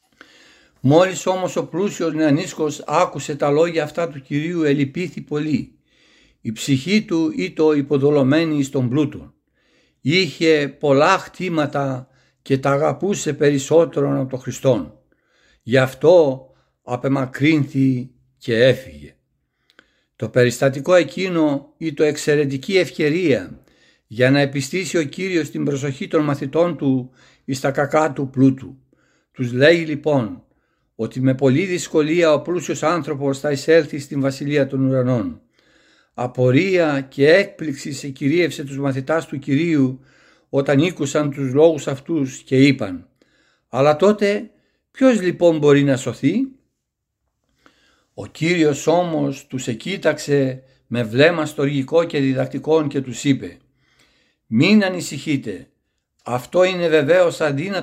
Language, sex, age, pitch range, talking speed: Greek, male, 60-79, 135-165 Hz, 120 wpm